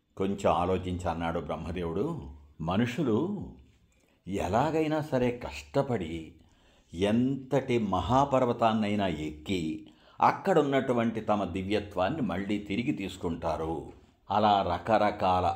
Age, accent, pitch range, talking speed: 60-79, native, 85-115 Hz, 75 wpm